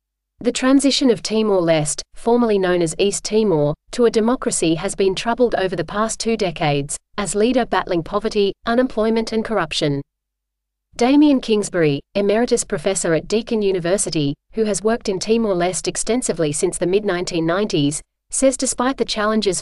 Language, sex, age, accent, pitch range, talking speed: English, female, 40-59, Australian, 170-225 Hz, 145 wpm